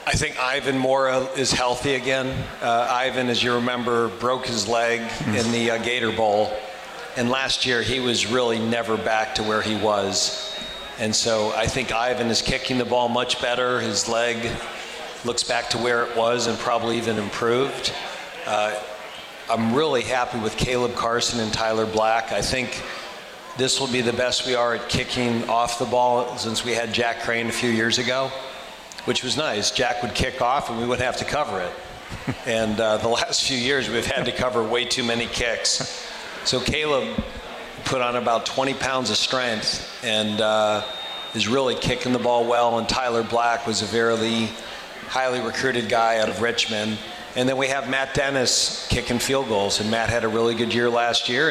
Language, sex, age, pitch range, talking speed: English, male, 40-59, 110-125 Hz, 190 wpm